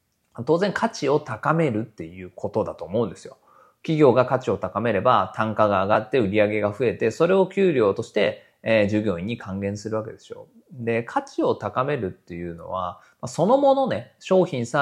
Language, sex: Japanese, male